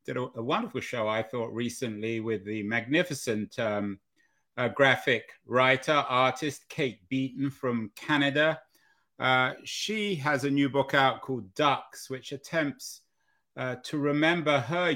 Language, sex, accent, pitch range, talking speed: English, male, British, 115-140 Hz, 140 wpm